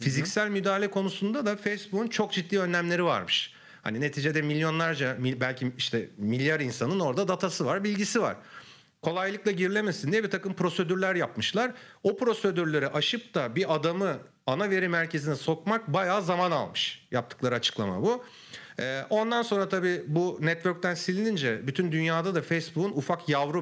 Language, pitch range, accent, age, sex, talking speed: Turkish, 135-185 Hz, native, 40-59, male, 140 wpm